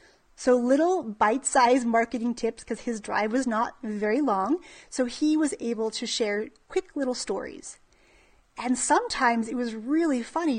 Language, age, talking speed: English, 30-49, 155 wpm